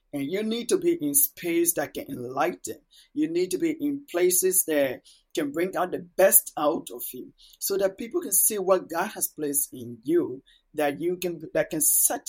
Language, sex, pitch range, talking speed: English, male, 145-205 Hz, 205 wpm